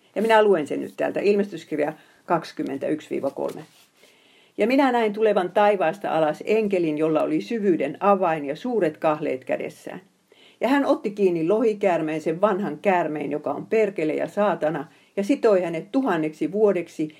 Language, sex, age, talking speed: Finnish, female, 50-69, 145 wpm